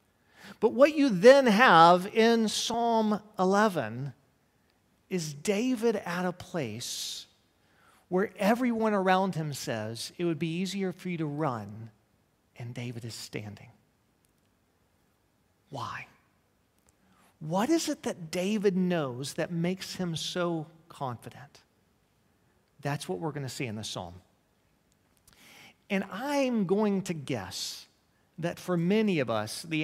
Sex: male